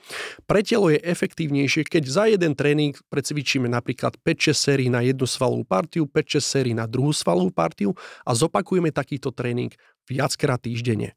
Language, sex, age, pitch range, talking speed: Slovak, male, 30-49, 125-155 Hz, 150 wpm